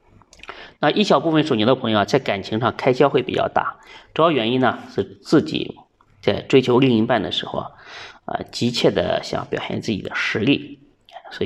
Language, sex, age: Chinese, male, 30-49